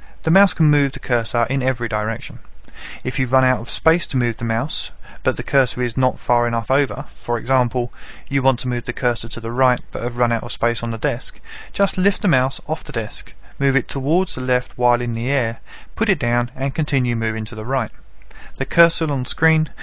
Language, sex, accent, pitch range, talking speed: English, male, British, 115-140 Hz, 230 wpm